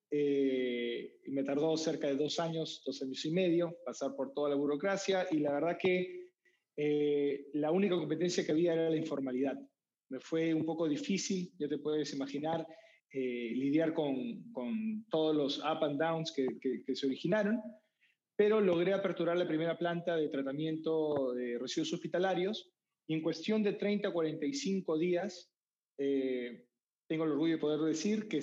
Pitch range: 145-175 Hz